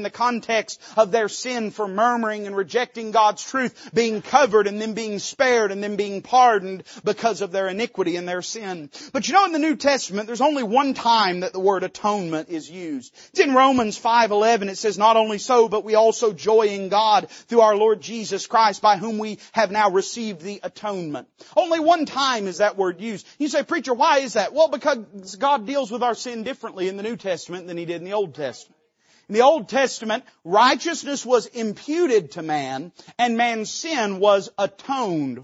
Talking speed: 205 wpm